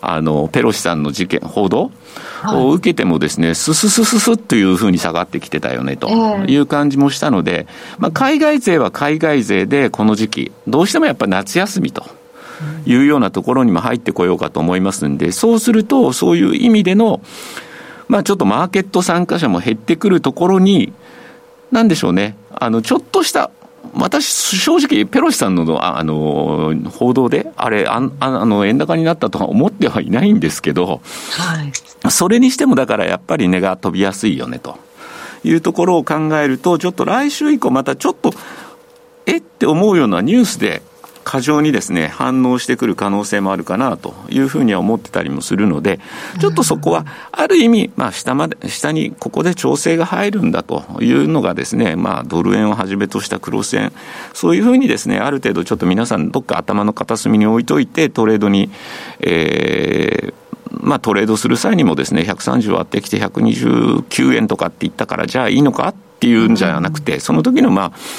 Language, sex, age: Japanese, male, 50-69